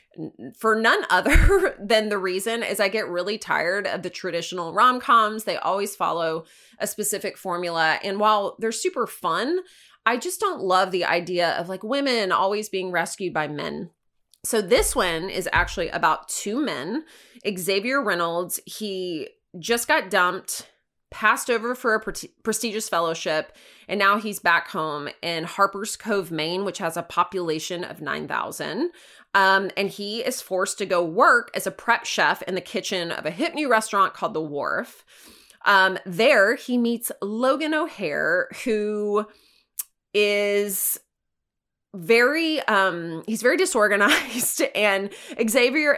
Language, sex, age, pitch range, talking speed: English, female, 20-39, 175-225 Hz, 145 wpm